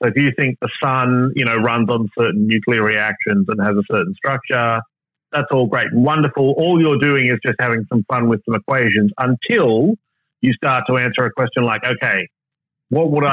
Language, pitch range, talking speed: English, 115-145 Hz, 205 wpm